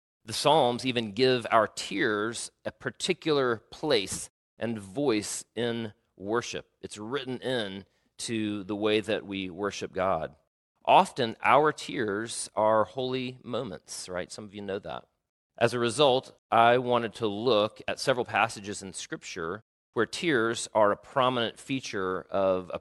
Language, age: English, 40-59